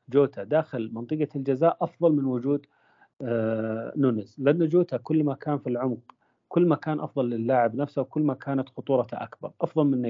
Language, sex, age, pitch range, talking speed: Arabic, male, 40-59, 115-145 Hz, 180 wpm